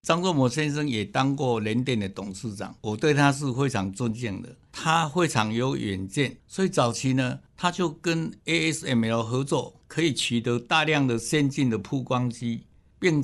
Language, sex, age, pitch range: Chinese, male, 60-79, 115-155 Hz